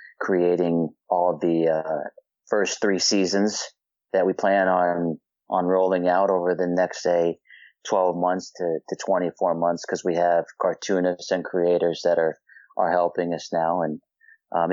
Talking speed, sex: 155 wpm, male